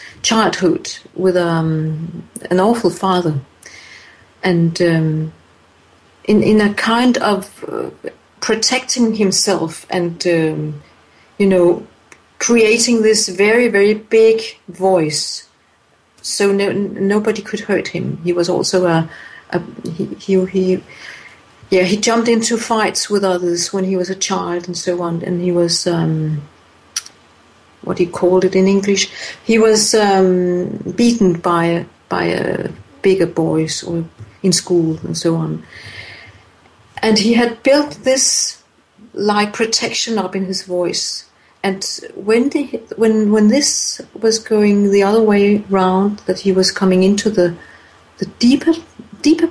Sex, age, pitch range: female, 50-69, 170-215 Hz